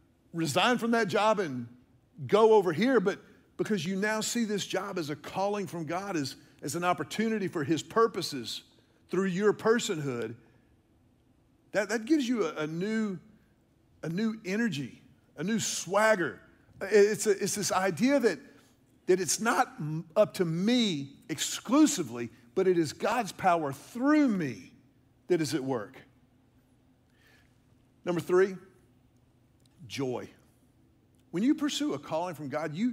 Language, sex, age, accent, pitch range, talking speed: English, male, 50-69, American, 135-215 Hz, 140 wpm